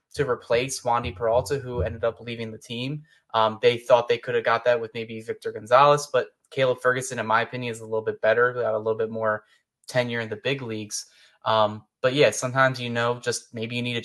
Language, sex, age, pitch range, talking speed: English, male, 10-29, 115-135 Hz, 230 wpm